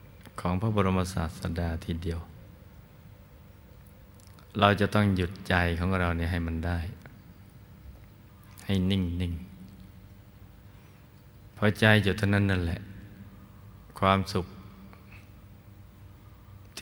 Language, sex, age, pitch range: Thai, male, 20-39, 90-100 Hz